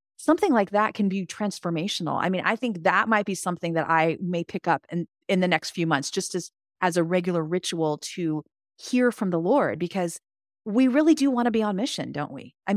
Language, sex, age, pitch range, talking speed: English, female, 30-49, 170-220 Hz, 225 wpm